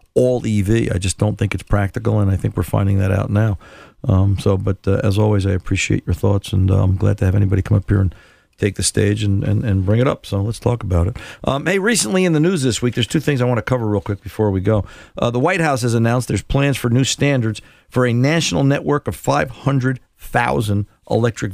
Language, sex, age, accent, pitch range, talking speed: English, male, 50-69, American, 100-125 Hz, 250 wpm